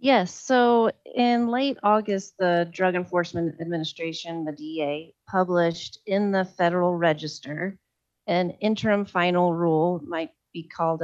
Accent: American